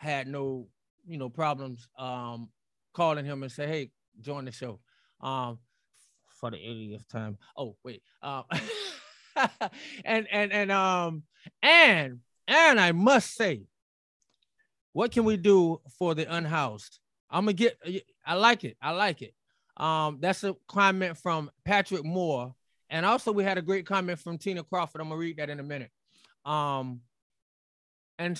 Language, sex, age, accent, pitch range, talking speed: English, male, 20-39, American, 145-200 Hz, 155 wpm